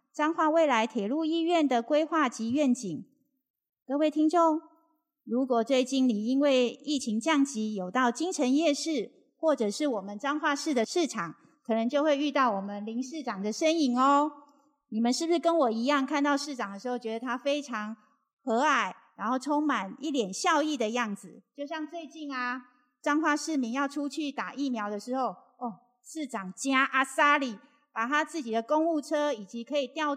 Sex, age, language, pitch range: female, 30-49, Chinese, 225-295 Hz